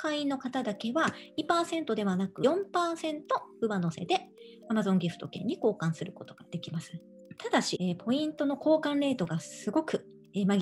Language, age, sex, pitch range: Japanese, 40-59, male, 180-275 Hz